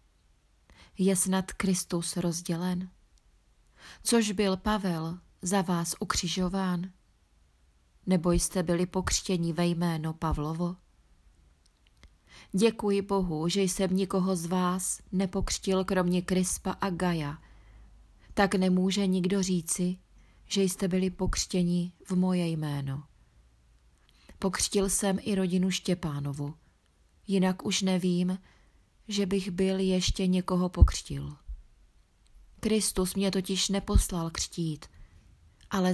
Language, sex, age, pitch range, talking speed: Czech, female, 30-49, 140-190 Hz, 100 wpm